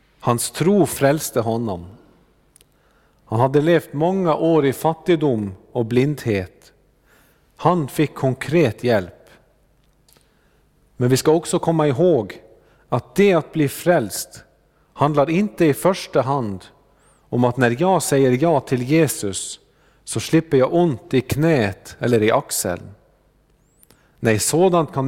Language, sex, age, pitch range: Swedish, male, 50-69, 120-160 Hz